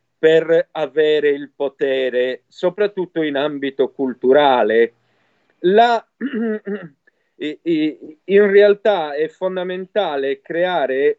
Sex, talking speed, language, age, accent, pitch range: male, 75 wpm, Italian, 50-69, native, 150-220 Hz